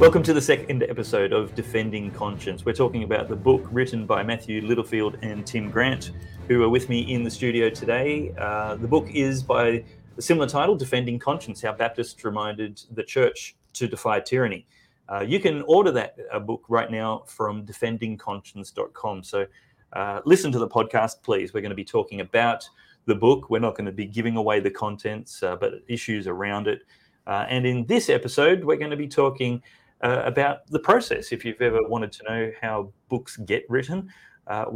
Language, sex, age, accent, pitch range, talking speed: English, male, 30-49, Australian, 105-130 Hz, 190 wpm